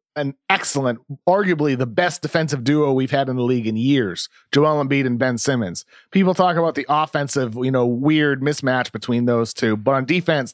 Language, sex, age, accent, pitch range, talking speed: English, male, 30-49, American, 140-180 Hz, 195 wpm